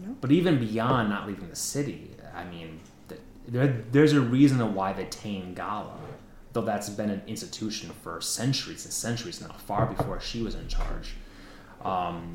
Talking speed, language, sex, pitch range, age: 170 wpm, English, male, 95-130 Hz, 30-49